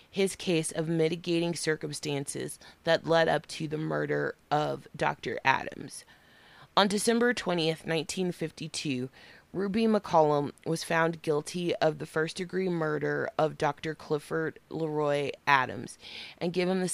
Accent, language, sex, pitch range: American, English, female, 150-175 Hz